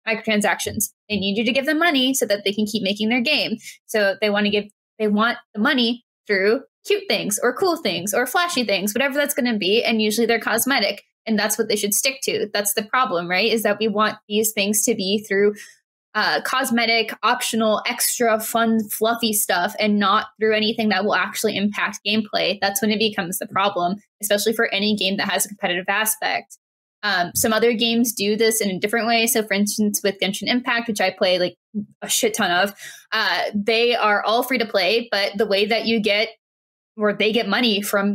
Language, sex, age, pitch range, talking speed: English, female, 10-29, 205-230 Hz, 215 wpm